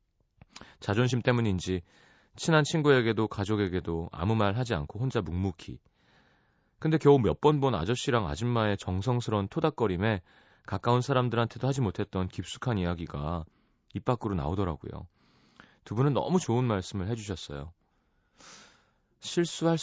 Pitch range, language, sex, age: 90-125 Hz, Korean, male, 30-49